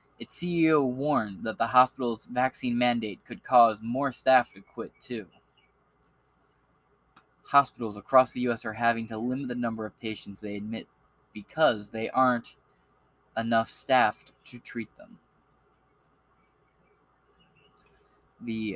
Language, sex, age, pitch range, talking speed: English, male, 20-39, 110-135 Hz, 120 wpm